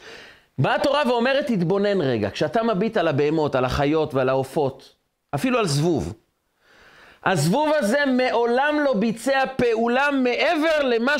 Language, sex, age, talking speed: Hebrew, male, 40-59, 130 wpm